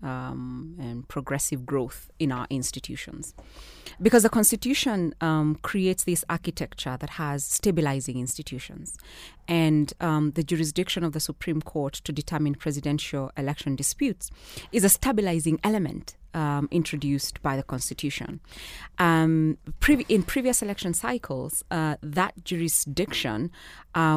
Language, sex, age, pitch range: English, female, 30-49, 145-180 Hz